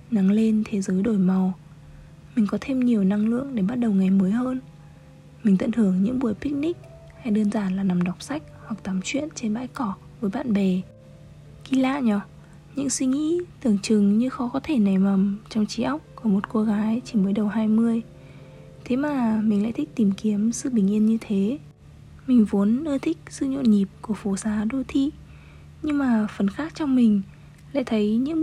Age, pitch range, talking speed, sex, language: 20-39, 200-250 Hz, 205 wpm, female, Vietnamese